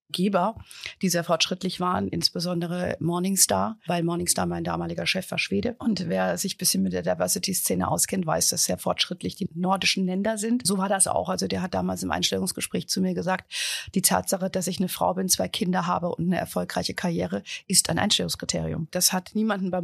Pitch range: 165-190 Hz